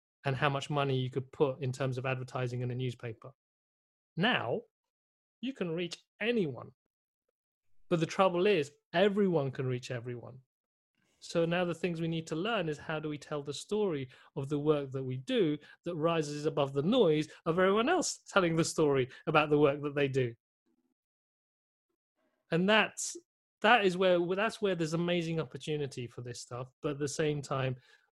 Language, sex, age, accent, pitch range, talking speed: English, male, 30-49, British, 130-170 Hz, 175 wpm